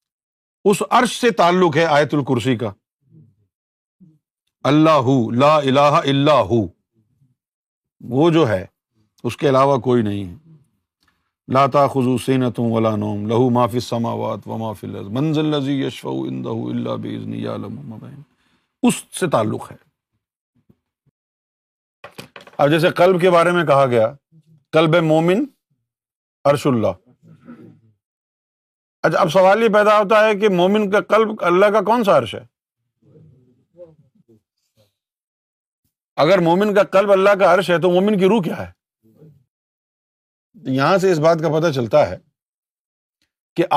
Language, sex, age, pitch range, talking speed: Urdu, male, 50-69, 120-180 Hz, 120 wpm